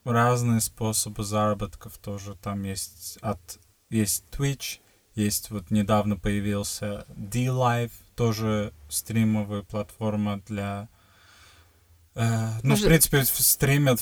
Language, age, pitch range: Russian, 20-39, 100-115 Hz